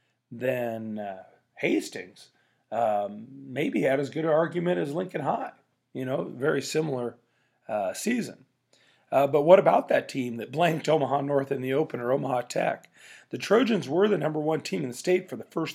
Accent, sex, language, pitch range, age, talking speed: American, male, English, 130-155 Hz, 40-59, 185 wpm